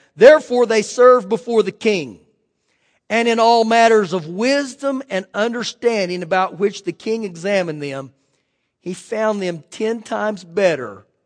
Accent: American